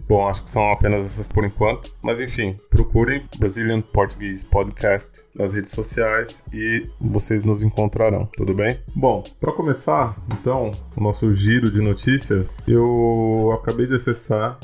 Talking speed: 150 wpm